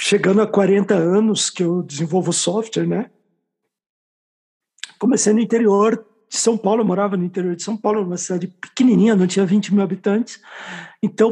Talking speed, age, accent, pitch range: 165 wpm, 50-69, Brazilian, 195-230 Hz